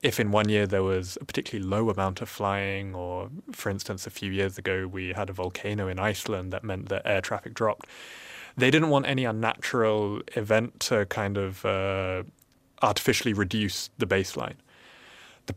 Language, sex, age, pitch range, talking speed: English, male, 20-39, 100-125 Hz, 175 wpm